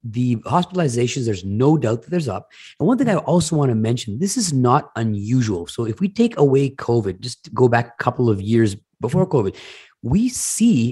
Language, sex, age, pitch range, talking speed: English, male, 30-49, 105-140 Hz, 205 wpm